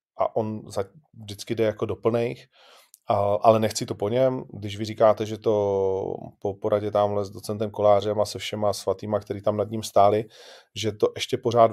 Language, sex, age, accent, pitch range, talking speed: Czech, male, 30-49, native, 100-115 Hz, 180 wpm